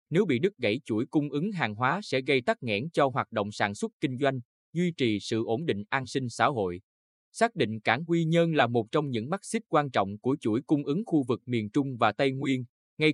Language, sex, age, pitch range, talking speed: Vietnamese, male, 20-39, 110-155 Hz, 245 wpm